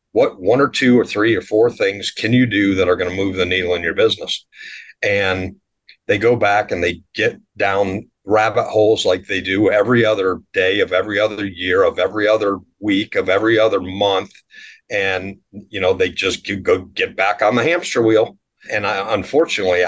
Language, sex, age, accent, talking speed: English, male, 50-69, American, 195 wpm